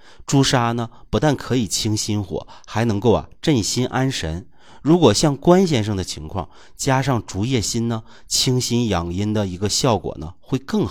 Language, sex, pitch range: Chinese, male, 90-135 Hz